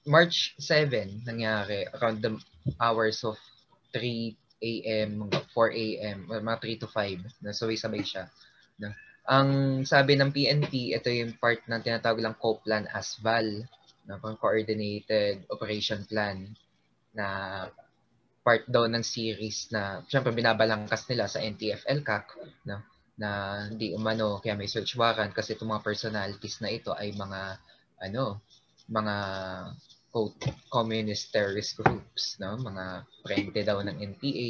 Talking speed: 135 wpm